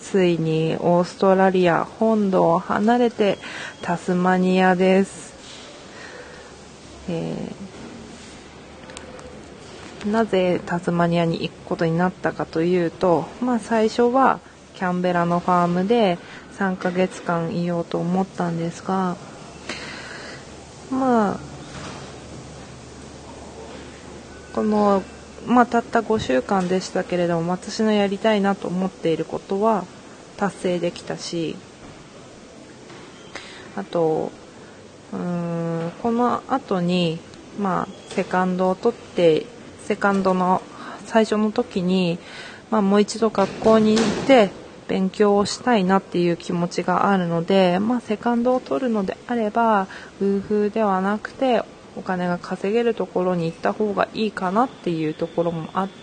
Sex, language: female, Japanese